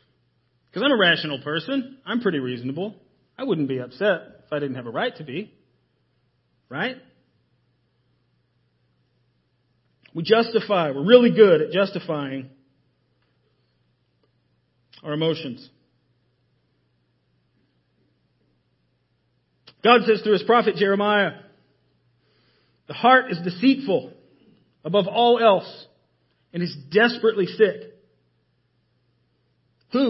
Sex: male